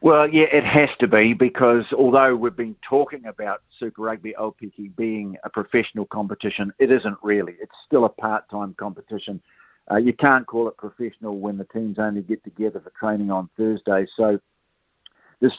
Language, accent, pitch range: English, Australian, 100-120 Hz